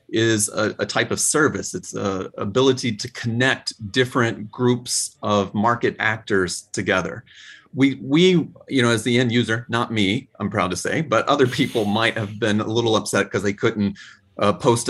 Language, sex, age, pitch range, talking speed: English, male, 30-49, 100-125 Hz, 180 wpm